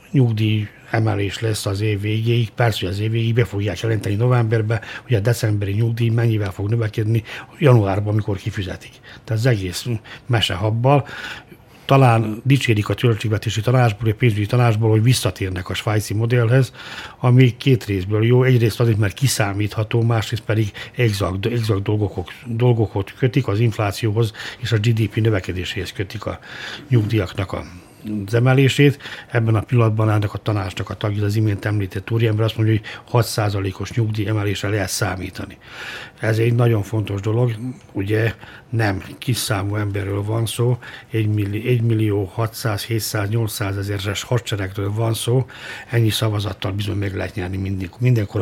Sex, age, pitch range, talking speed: male, 60-79, 100-120 Hz, 145 wpm